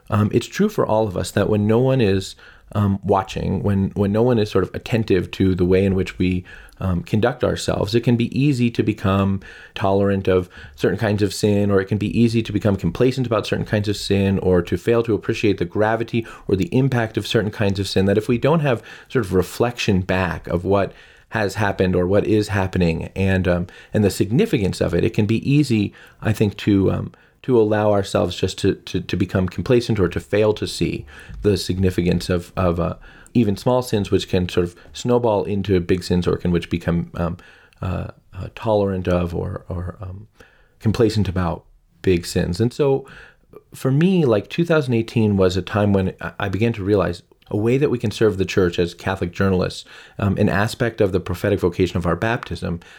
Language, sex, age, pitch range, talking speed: English, male, 30-49, 95-110 Hz, 205 wpm